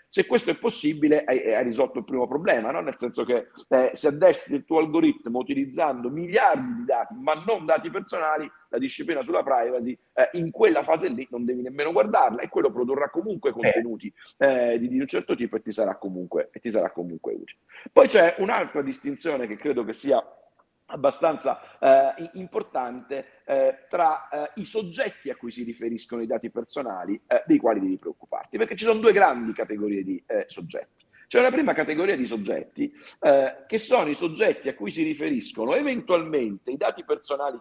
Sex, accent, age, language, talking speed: male, native, 50-69, Italian, 185 wpm